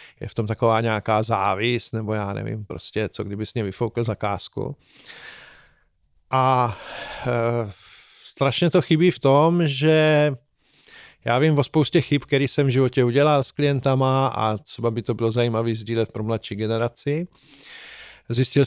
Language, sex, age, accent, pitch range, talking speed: Czech, male, 40-59, native, 115-140 Hz, 150 wpm